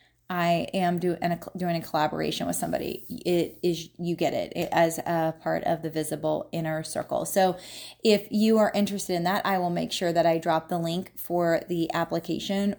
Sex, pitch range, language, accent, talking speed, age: female, 165-195 Hz, English, American, 190 wpm, 20-39